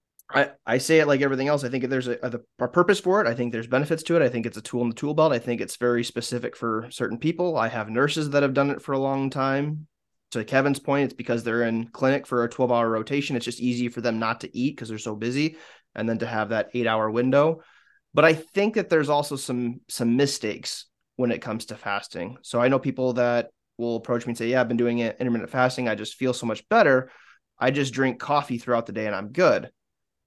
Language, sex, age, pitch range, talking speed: English, male, 20-39, 115-135 Hz, 255 wpm